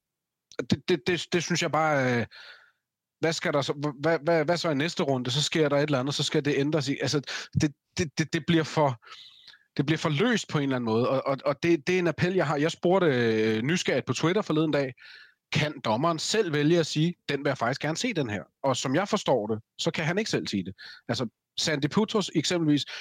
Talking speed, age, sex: 245 wpm, 30-49, male